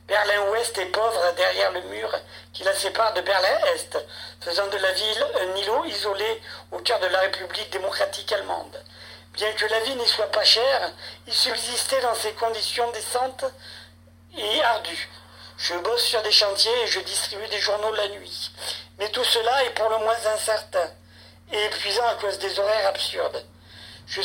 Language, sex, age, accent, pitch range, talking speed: French, male, 50-69, French, 190-230 Hz, 175 wpm